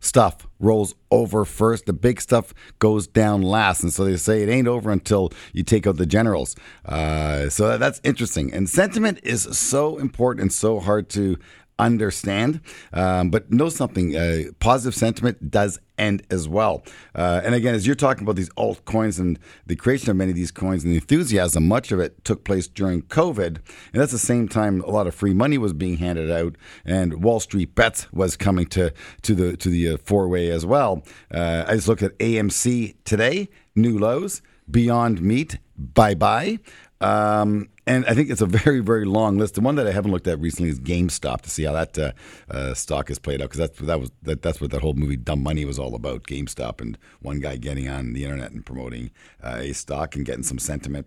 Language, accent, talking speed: English, American, 205 wpm